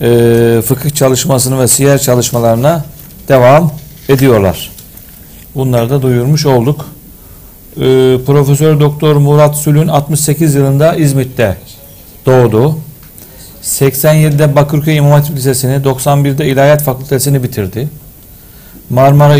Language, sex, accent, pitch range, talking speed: Turkish, male, native, 130-150 Hz, 95 wpm